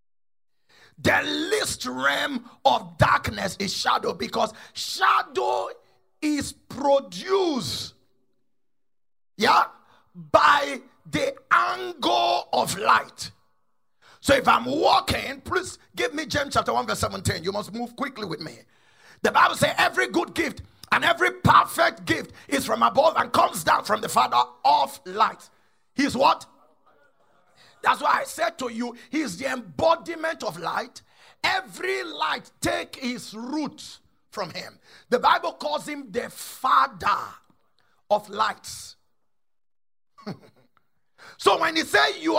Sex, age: male, 40-59